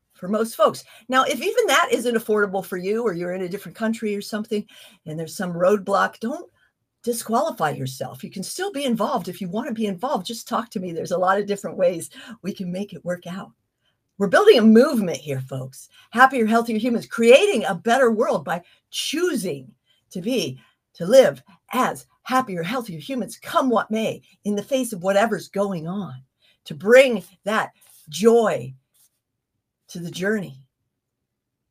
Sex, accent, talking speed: female, American, 175 wpm